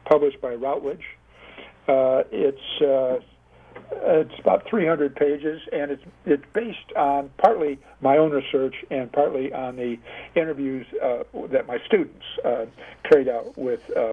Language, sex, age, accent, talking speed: English, male, 60-79, American, 140 wpm